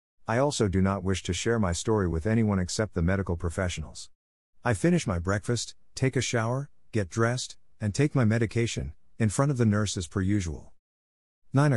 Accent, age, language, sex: American, 50-69, English, male